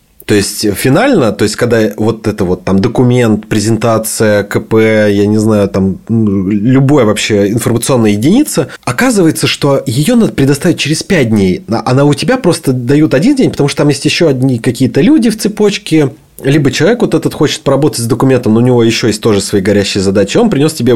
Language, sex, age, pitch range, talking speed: Russian, male, 30-49, 105-140 Hz, 190 wpm